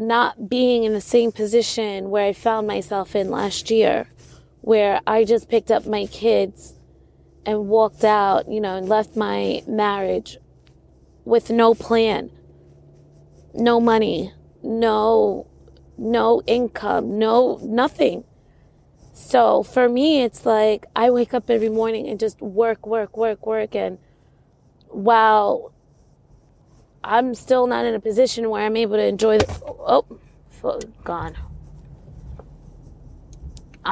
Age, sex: 20-39, female